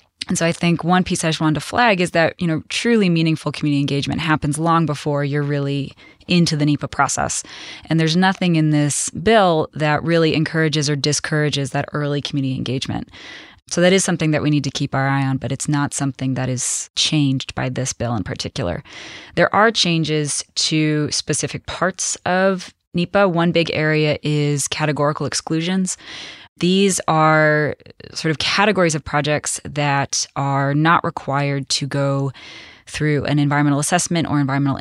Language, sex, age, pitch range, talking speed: English, female, 20-39, 140-165 Hz, 170 wpm